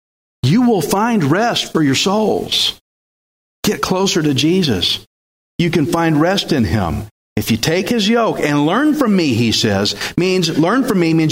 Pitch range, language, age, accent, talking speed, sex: 135-205 Hz, English, 40-59, American, 175 wpm, male